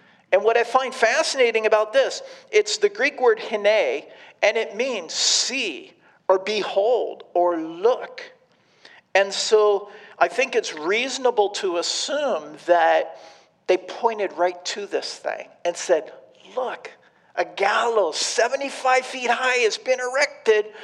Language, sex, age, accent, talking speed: English, male, 50-69, American, 130 wpm